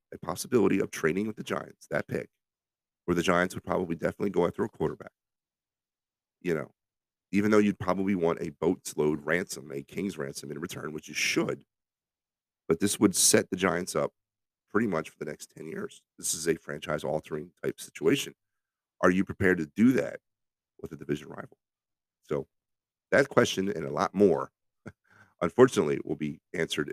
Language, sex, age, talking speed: English, male, 40-59, 180 wpm